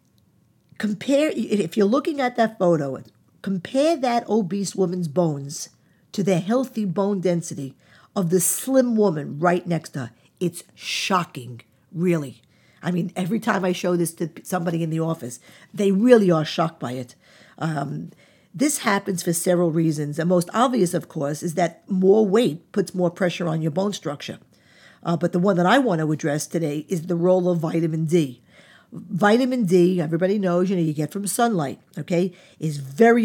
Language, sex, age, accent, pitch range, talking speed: English, female, 50-69, American, 165-205 Hz, 175 wpm